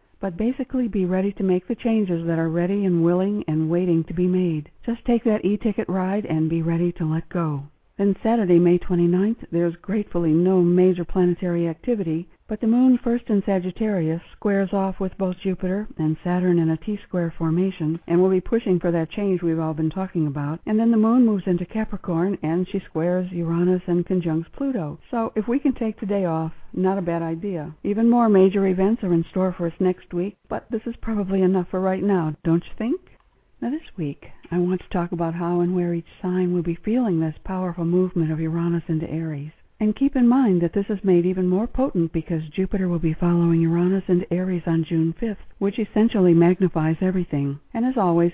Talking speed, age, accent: 205 wpm, 60-79, American